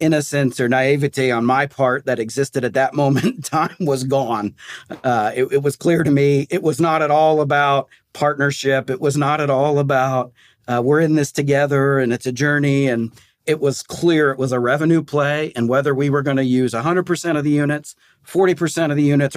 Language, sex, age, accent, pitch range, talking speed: English, male, 40-59, American, 115-140 Hz, 210 wpm